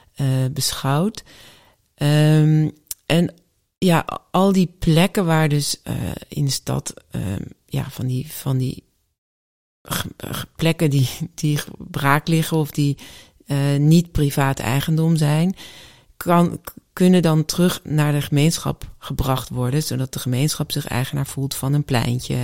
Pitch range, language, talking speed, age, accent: 130-155 Hz, Dutch, 125 wpm, 40-59, Dutch